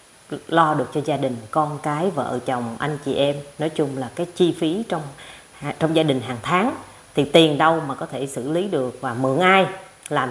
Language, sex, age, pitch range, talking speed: Vietnamese, female, 20-39, 140-225 Hz, 215 wpm